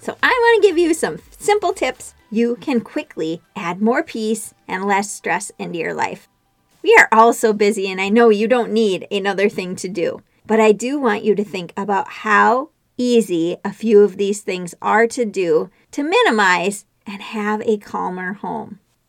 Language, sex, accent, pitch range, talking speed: English, female, American, 200-265 Hz, 190 wpm